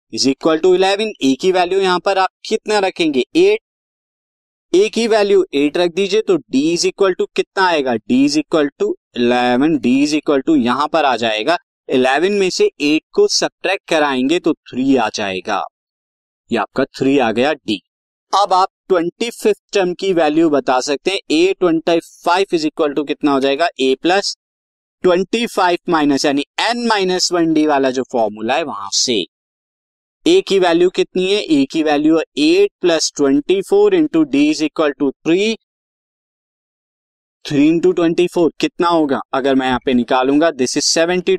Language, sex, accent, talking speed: Hindi, male, native, 170 wpm